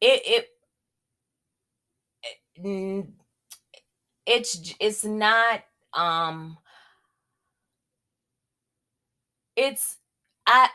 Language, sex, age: English, female, 20-39